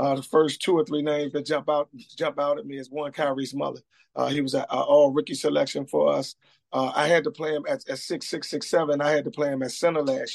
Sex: male